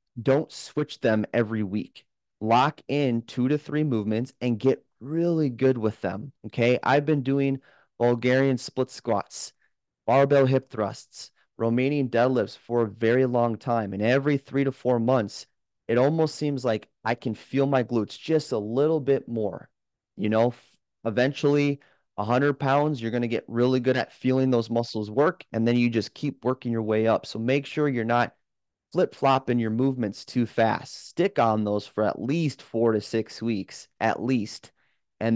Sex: male